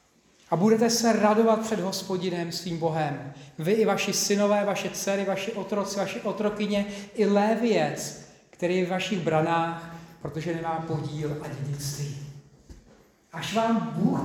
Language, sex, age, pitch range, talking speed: Czech, male, 40-59, 170-220 Hz, 140 wpm